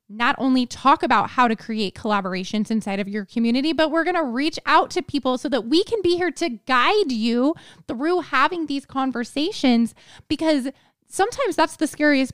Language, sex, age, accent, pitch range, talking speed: English, female, 20-39, American, 225-285 Hz, 185 wpm